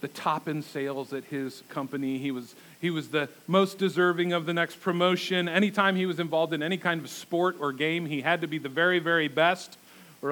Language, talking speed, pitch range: English, 215 wpm, 145-185 Hz